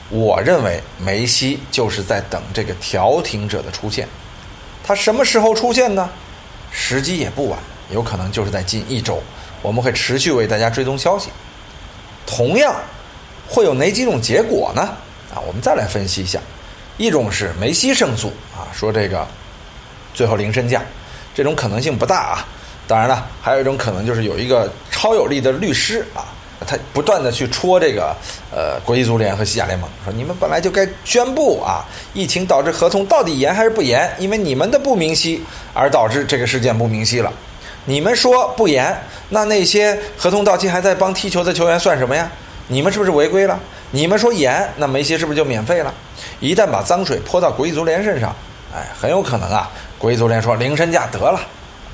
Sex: male